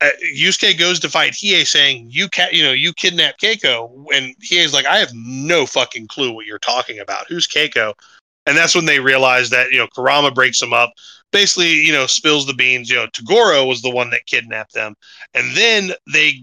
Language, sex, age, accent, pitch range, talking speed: English, male, 20-39, American, 130-160 Hz, 210 wpm